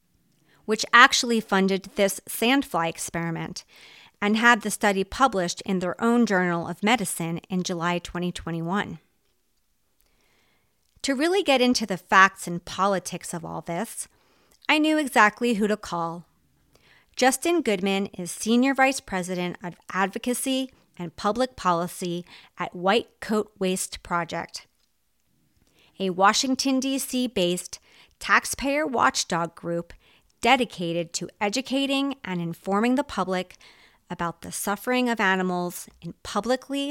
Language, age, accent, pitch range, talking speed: English, 40-59, American, 175-240 Hz, 120 wpm